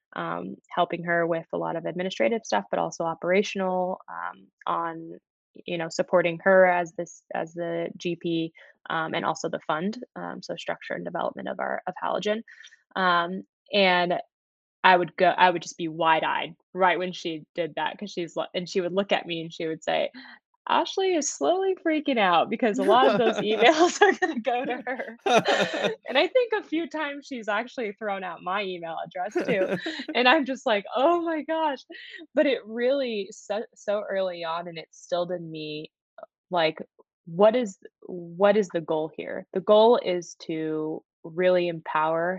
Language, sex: English, female